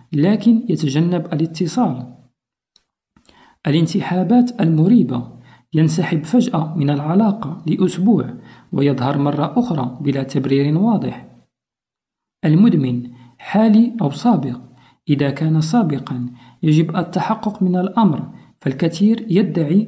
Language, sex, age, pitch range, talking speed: Arabic, male, 50-69, 155-235 Hz, 90 wpm